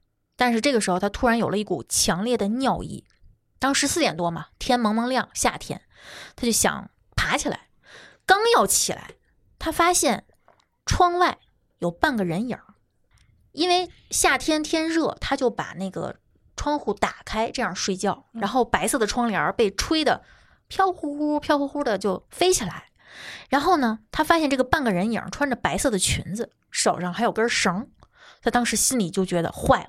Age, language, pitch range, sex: 20-39, Chinese, 205-290 Hz, female